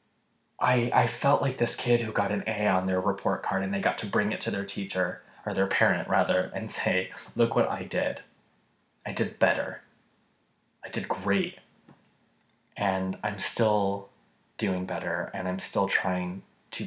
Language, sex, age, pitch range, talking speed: English, male, 20-39, 95-110 Hz, 175 wpm